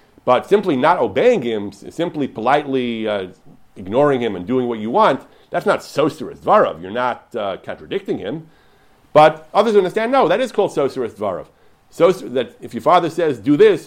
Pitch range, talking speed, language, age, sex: 120-155 Hz, 175 wpm, English, 40-59, male